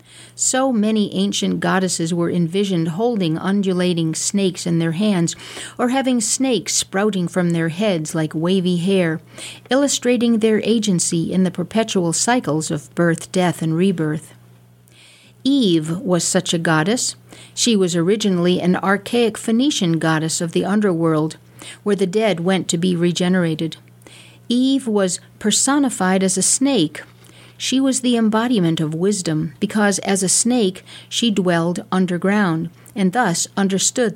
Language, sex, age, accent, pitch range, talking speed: English, female, 50-69, American, 165-210 Hz, 135 wpm